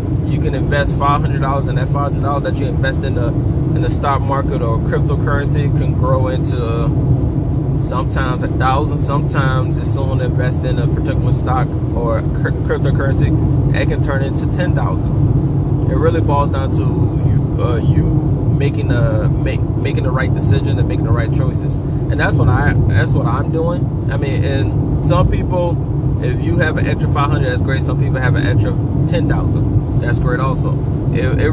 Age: 20-39